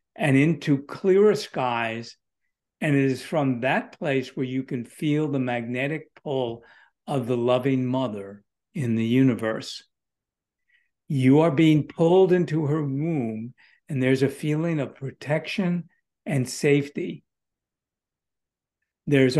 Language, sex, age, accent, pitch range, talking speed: English, male, 60-79, American, 130-160 Hz, 125 wpm